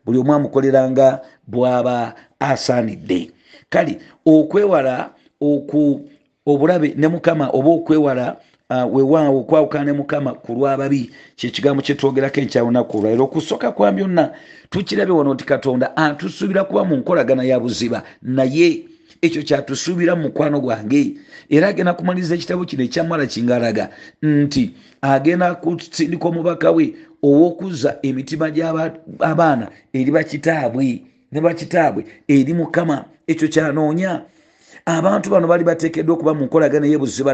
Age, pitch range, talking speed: 50-69, 140-170 Hz, 115 wpm